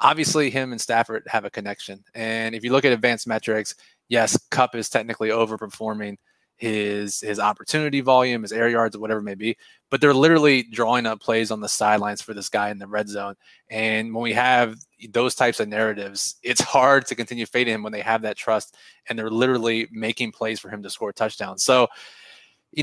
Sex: male